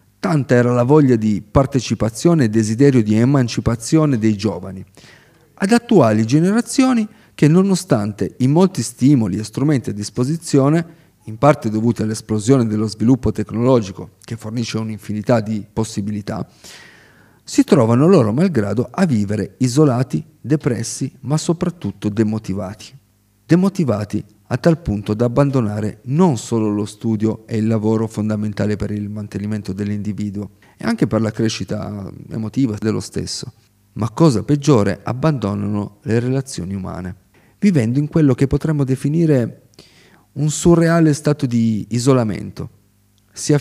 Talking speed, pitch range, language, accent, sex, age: 125 wpm, 105-140 Hz, Italian, native, male, 40-59